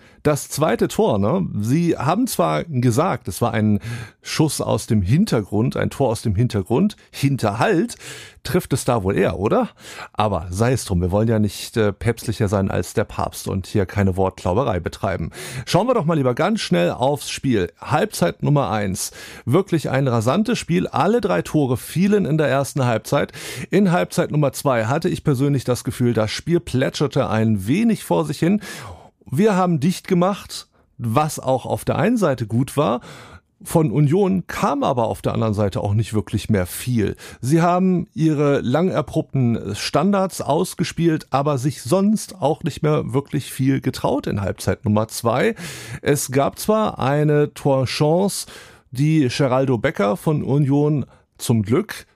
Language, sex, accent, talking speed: German, male, German, 165 wpm